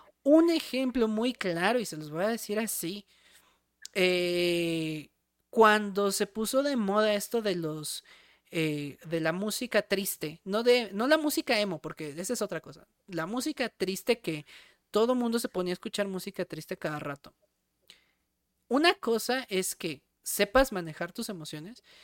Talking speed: 160 wpm